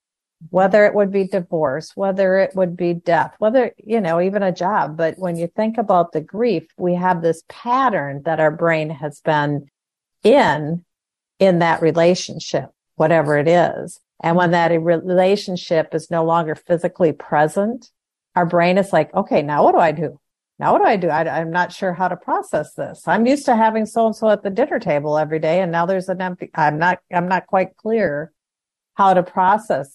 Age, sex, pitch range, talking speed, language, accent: 50-69, female, 160-190 Hz, 190 wpm, English, American